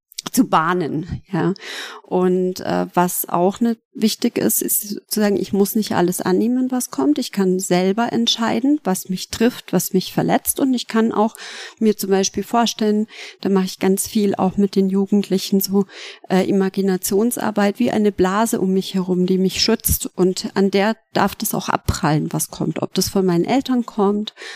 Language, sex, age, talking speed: German, female, 40-59, 180 wpm